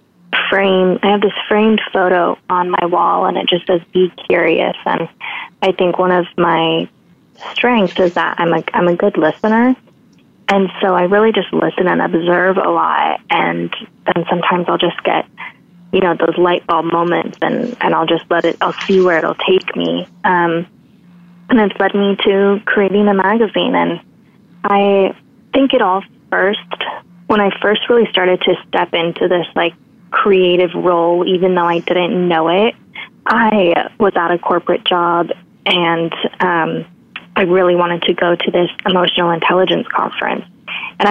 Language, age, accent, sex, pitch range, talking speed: English, 20-39, American, female, 175-200 Hz, 170 wpm